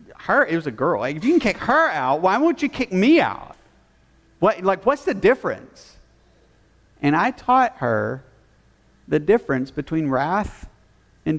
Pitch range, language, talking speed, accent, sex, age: 110-160 Hz, English, 170 wpm, American, male, 50-69